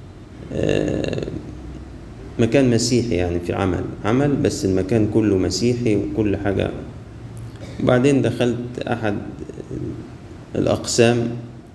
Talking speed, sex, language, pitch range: 80 wpm, male, Arabic, 95-115 Hz